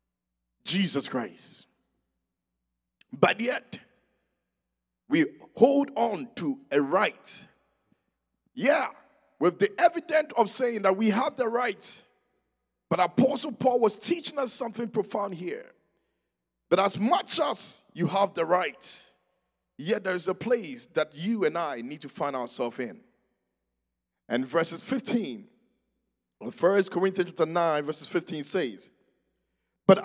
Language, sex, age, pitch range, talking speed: English, male, 50-69, 185-255 Hz, 125 wpm